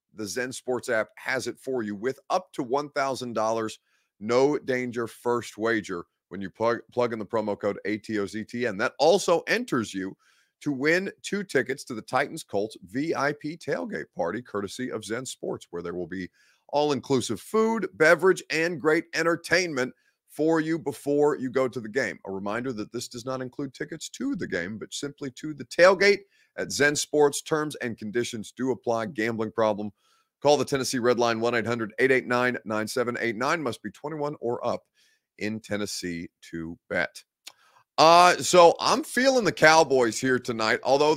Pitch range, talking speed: 110-150 Hz, 160 wpm